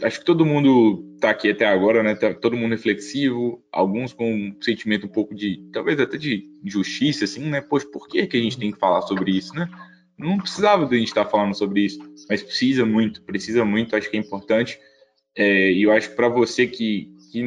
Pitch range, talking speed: 105-140 Hz, 225 wpm